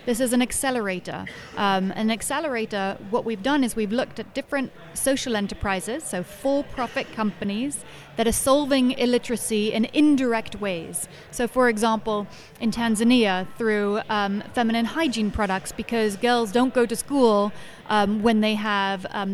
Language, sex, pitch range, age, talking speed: English, female, 205-240 Hz, 30-49, 150 wpm